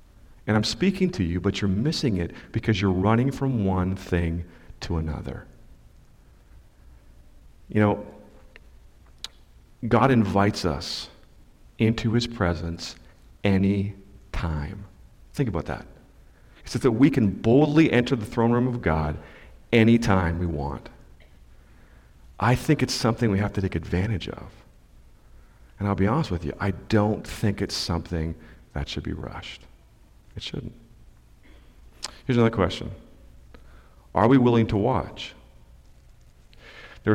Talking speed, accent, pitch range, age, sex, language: 130 wpm, American, 80-110 Hz, 40-59, male, English